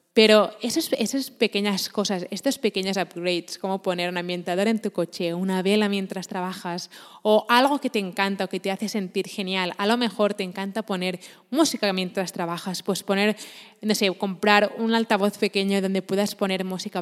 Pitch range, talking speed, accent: 185-220 Hz, 180 wpm, Spanish